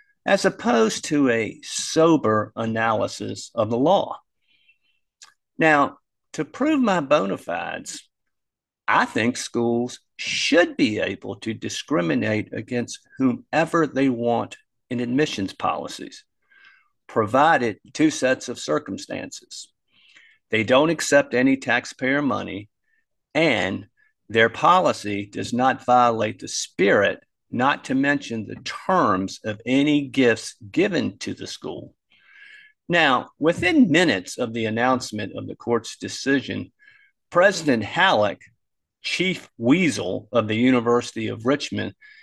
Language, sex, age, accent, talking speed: English, male, 50-69, American, 115 wpm